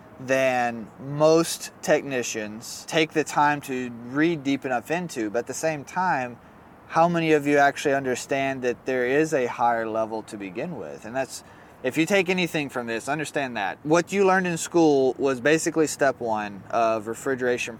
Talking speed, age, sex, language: 175 wpm, 20-39, male, English